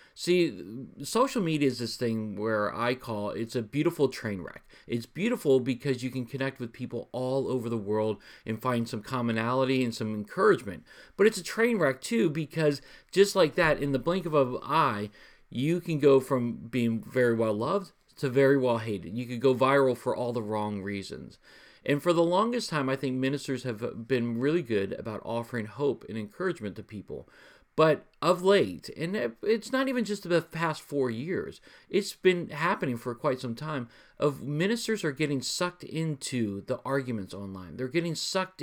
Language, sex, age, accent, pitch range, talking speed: English, male, 40-59, American, 115-165 Hz, 185 wpm